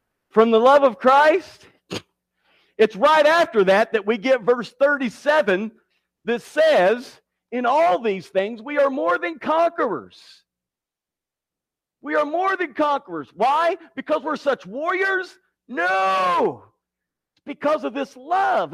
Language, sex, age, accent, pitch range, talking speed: English, male, 50-69, American, 200-300 Hz, 130 wpm